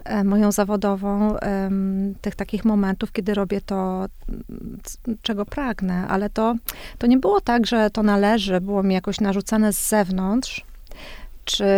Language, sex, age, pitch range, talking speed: Polish, female, 30-49, 200-230 Hz, 145 wpm